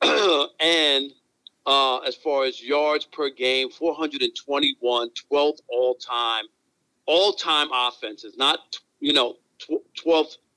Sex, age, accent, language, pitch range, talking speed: male, 50-69, American, English, 125-170 Hz, 95 wpm